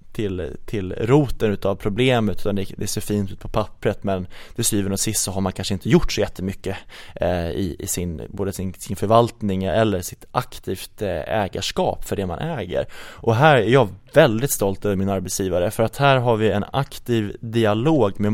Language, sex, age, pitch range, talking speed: Swedish, male, 20-39, 100-120 Hz, 190 wpm